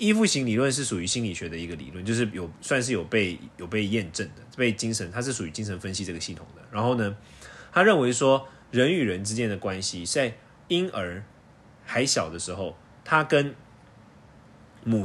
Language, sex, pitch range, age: Chinese, male, 105-130 Hz, 20-39